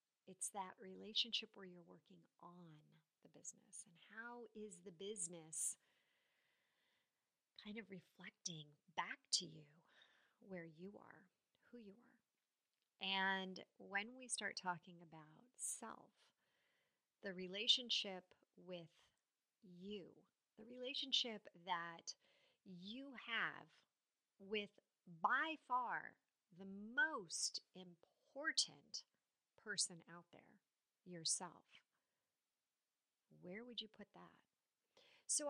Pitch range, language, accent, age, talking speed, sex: 175-230 Hz, English, American, 40-59, 100 wpm, female